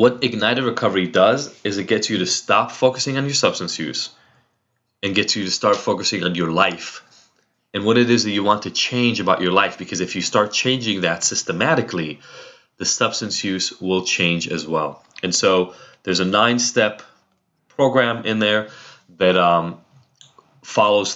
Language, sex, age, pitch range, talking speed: English, male, 20-39, 90-110 Hz, 175 wpm